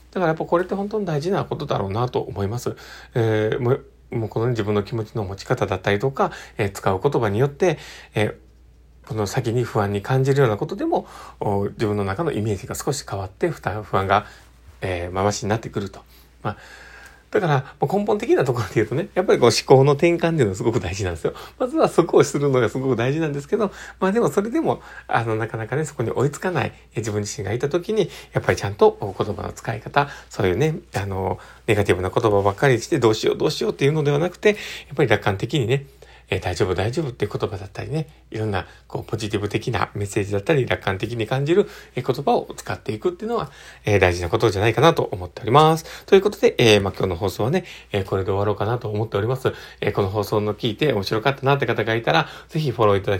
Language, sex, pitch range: Japanese, male, 105-145 Hz